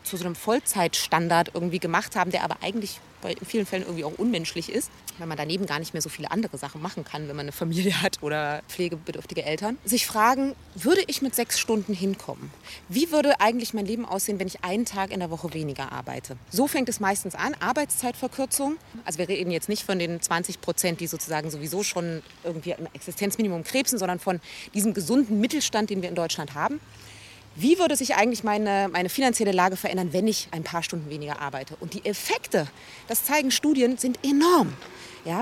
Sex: female